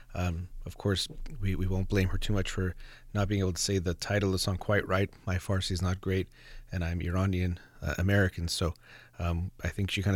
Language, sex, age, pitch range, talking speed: English, male, 30-49, 90-110 Hz, 225 wpm